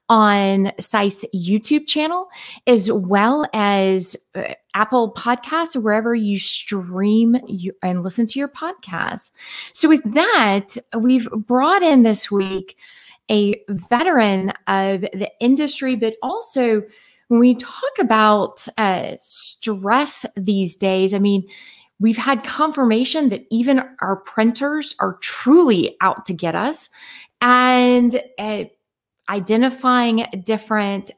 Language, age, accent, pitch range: English, 20-39, American, 200-255 Hz